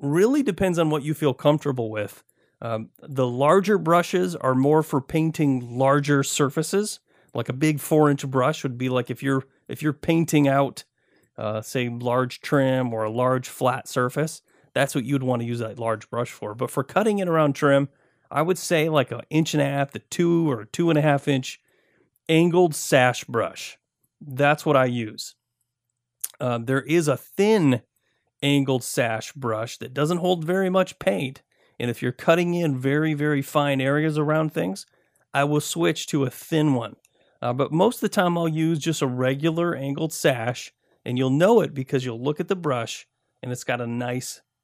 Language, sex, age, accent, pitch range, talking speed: English, male, 30-49, American, 125-160 Hz, 190 wpm